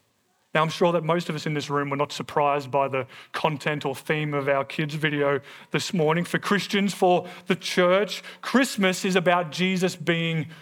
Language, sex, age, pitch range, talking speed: English, male, 30-49, 150-185 Hz, 190 wpm